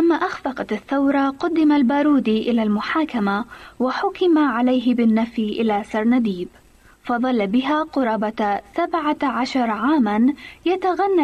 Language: Arabic